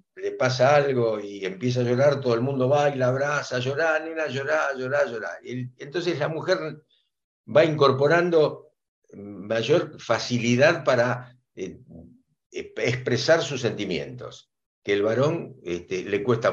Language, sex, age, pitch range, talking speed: Spanish, male, 60-79, 115-150 Hz, 135 wpm